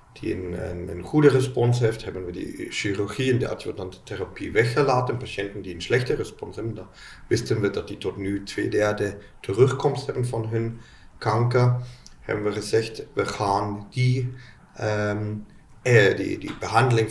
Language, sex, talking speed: Dutch, male, 165 wpm